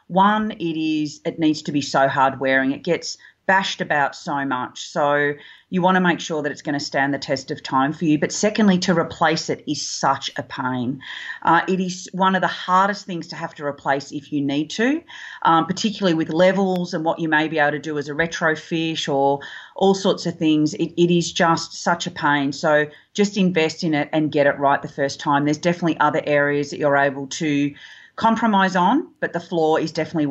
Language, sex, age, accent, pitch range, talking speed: English, female, 40-59, Australian, 150-180 Hz, 220 wpm